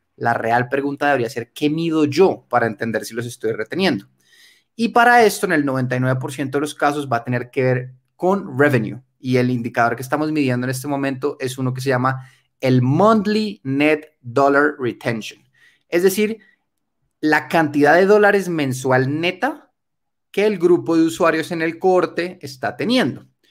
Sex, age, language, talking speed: male, 30-49, Spanish, 170 wpm